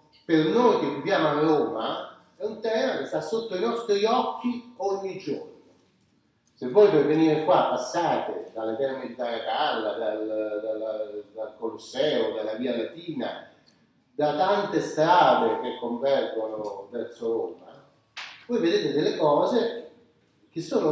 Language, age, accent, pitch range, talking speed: Italian, 40-59, native, 135-200 Hz, 135 wpm